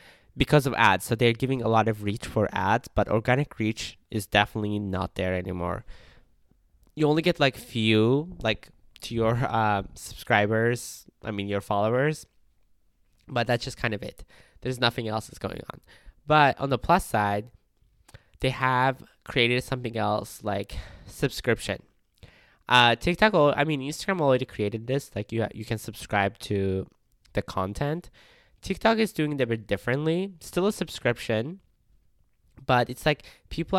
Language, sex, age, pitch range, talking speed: English, male, 10-29, 105-130 Hz, 155 wpm